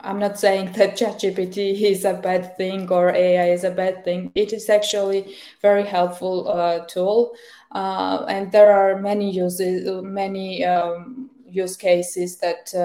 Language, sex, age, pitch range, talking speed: English, female, 20-39, 175-195 Hz, 160 wpm